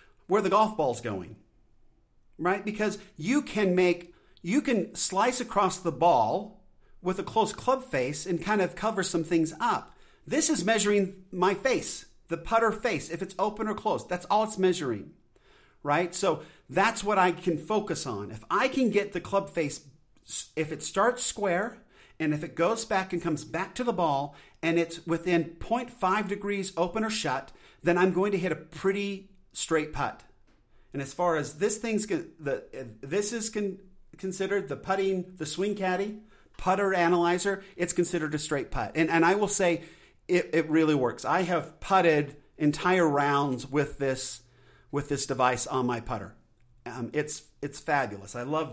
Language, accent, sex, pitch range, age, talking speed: English, American, male, 150-200 Hz, 40-59, 175 wpm